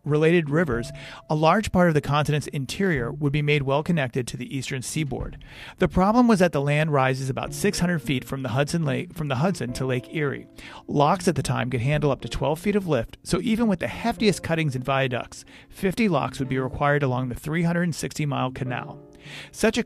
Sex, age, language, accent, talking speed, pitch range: male, 40-59, English, American, 210 wpm, 135-180 Hz